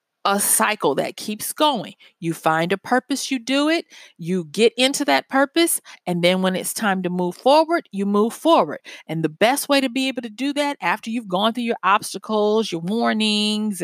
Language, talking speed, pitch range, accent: English, 200 wpm, 200-290 Hz, American